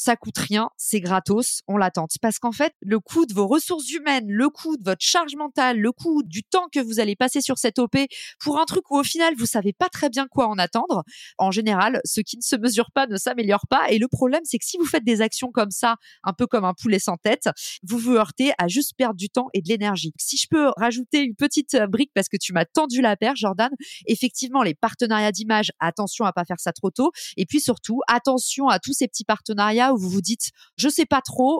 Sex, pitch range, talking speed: female, 195-270 Hz, 250 wpm